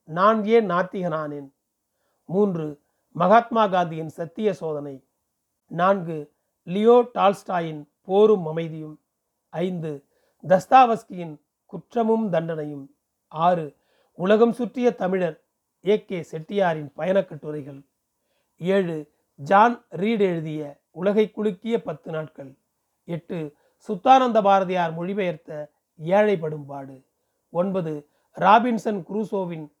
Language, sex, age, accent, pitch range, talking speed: Tamil, male, 40-59, native, 160-215 Hz, 85 wpm